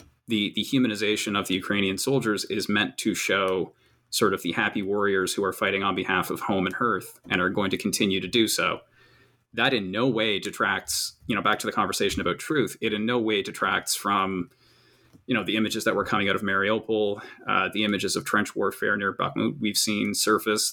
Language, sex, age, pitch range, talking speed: English, male, 20-39, 100-120 Hz, 210 wpm